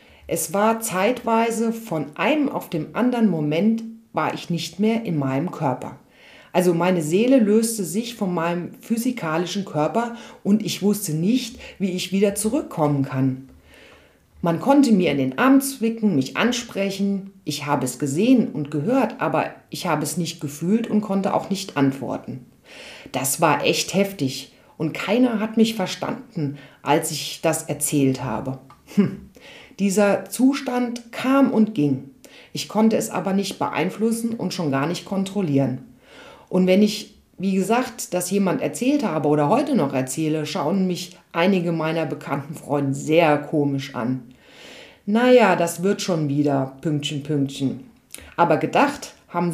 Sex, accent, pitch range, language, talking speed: female, German, 150-220 Hz, German, 150 wpm